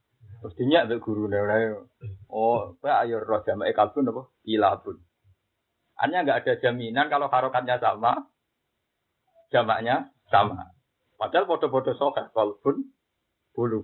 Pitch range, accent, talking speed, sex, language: 105-145 Hz, native, 110 wpm, male, Indonesian